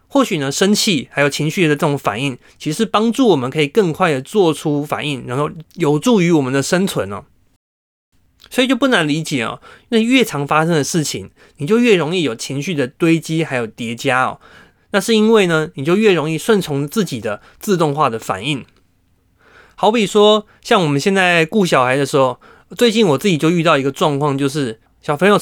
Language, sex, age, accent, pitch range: Chinese, male, 20-39, native, 140-195 Hz